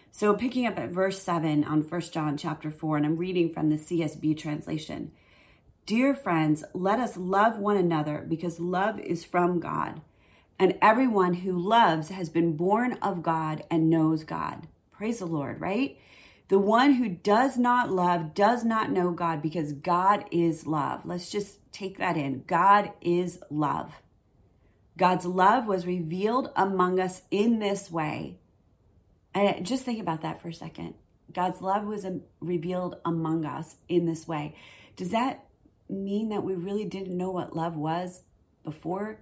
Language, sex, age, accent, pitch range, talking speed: English, female, 30-49, American, 160-210 Hz, 160 wpm